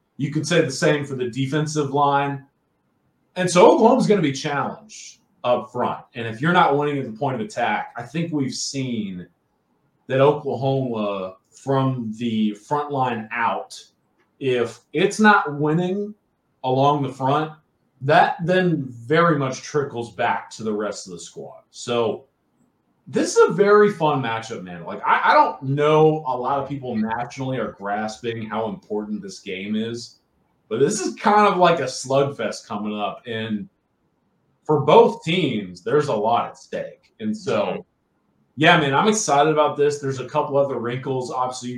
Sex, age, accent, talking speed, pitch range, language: male, 30-49, American, 170 wpm, 115-150 Hz, English